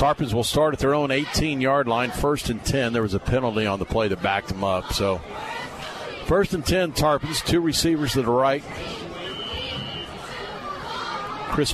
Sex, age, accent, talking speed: male, 50-69, American, 170 wpm